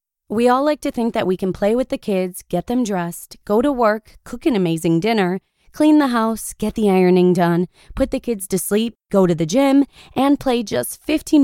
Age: 20-39